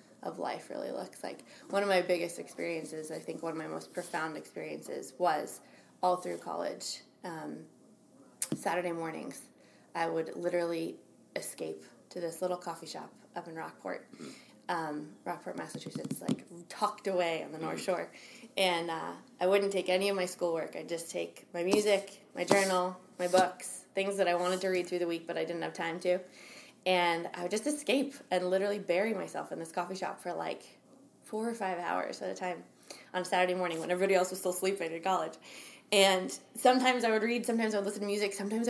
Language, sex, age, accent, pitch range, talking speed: English, female, 20-39, American, 175-200 Hz, 195 wpm